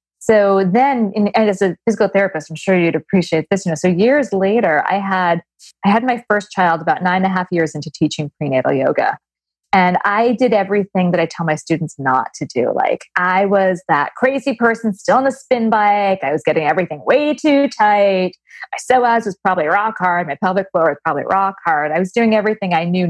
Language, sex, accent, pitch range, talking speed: English, female, American, 175-230 Hz, 215 wpm